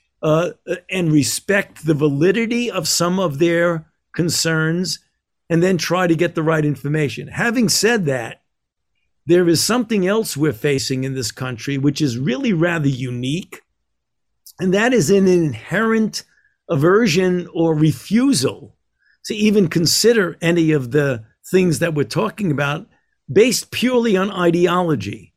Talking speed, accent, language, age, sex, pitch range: 135 wpm, American, English, 50-69, male, 155-190 Hz